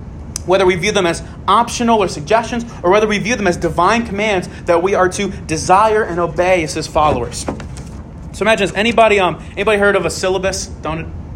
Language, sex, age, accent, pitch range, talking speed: English, male, 30-49, American, 170-215 Hz, 195 wpm